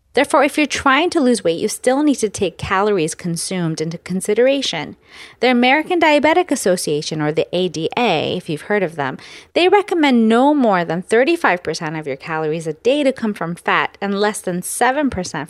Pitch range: 175-270 Hz